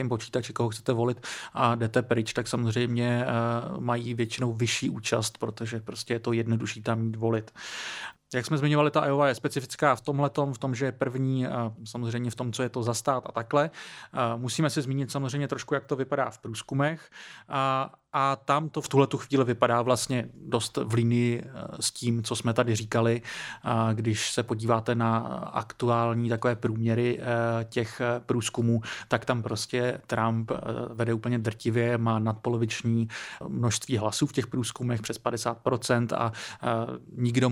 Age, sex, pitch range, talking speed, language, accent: 30-49, male, 115-130 Hz, 160 wpm, Czech, native